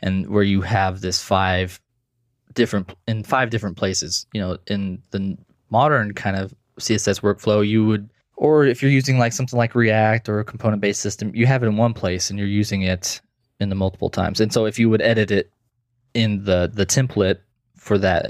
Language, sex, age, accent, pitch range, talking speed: English, male, 20-39, American, 95-120 Hz, 205 wpm